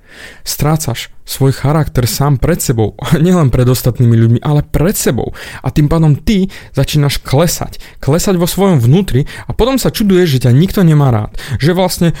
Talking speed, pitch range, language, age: 165 wpm, 125-165 Hz, Slovak, 30-49